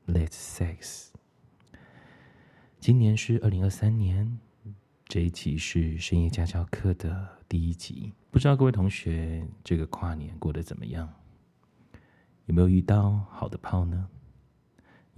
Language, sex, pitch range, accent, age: Chinese, male, 85-105 Hz, native, 20-39